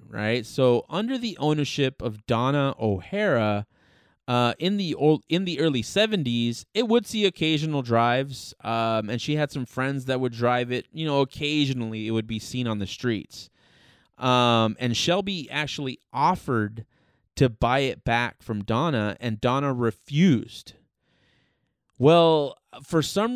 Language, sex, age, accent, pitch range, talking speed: English, male, 30-49, American, 115-150 Hz, 150 wpm